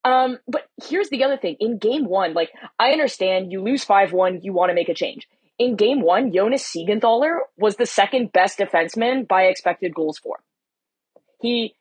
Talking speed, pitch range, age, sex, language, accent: 190 wpm, 185-260 Hz, 20-39, female, English, American